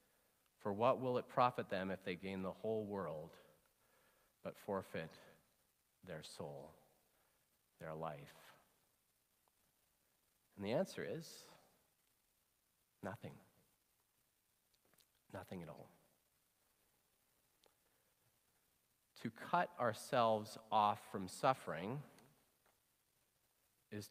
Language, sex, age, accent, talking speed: English, male, 40-59, American, 80 wpm